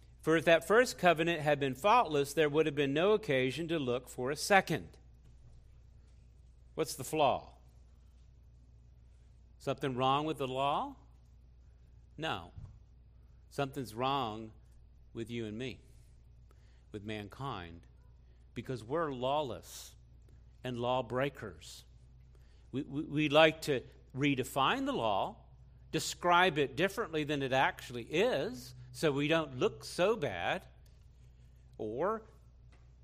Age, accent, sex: 50-69, American, male